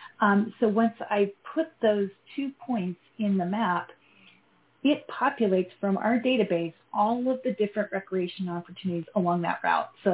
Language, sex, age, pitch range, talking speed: English, female, 30-49, 180-225 Hz, 155 wpm